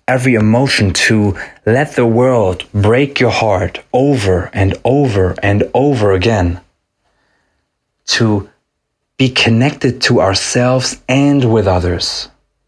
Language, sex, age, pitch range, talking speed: English, male, 30-49, 95-125 Hz, 110 wpm